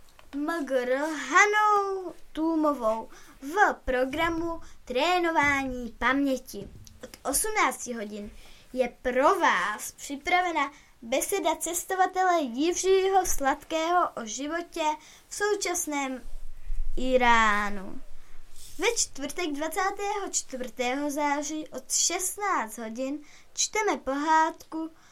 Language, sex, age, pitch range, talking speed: Czech, female, 20-39, 250-340 Hz, 75 wpm